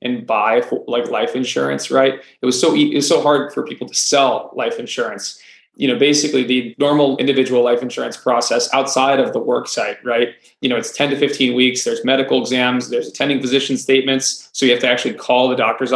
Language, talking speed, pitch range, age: English, 205 wpm, 125-140 Hz, 20-39